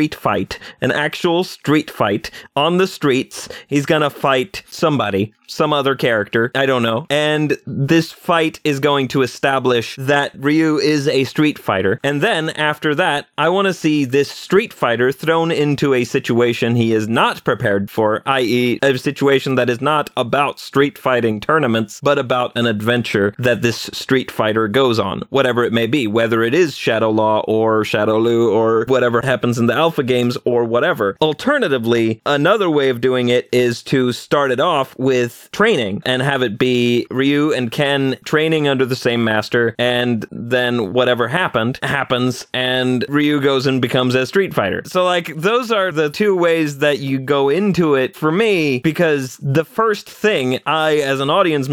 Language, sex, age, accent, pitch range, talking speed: English, male, 30-49, American, 120-150 Hz, 175 wpm